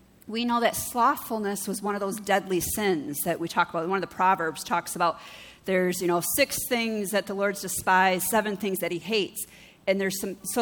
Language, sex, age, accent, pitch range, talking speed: English, female, 40-59, American, 185-230 Hz, 210 wpm